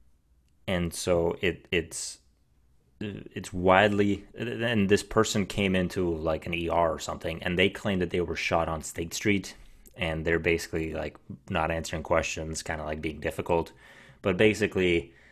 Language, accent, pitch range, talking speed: English, American, 80-100 Hz, 155 wpm